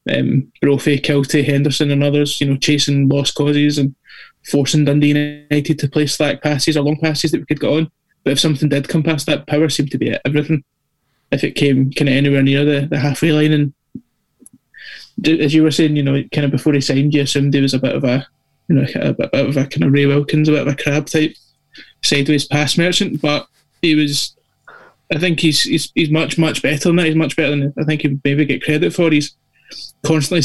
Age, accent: 20-39, British